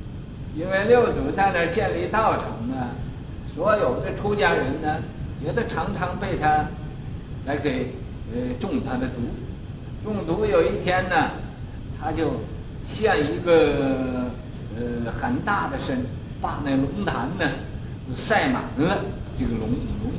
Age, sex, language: 60-79, male, Chinese